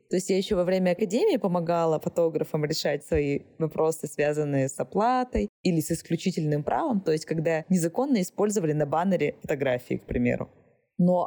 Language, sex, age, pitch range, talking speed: Russian, female, 20-39, 160-215 Hz, 160 wpm